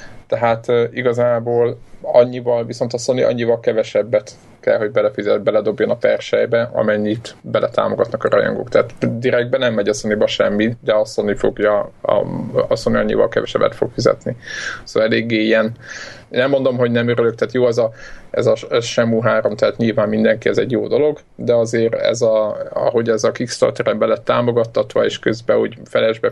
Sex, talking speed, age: male, 170 wpm, 20-39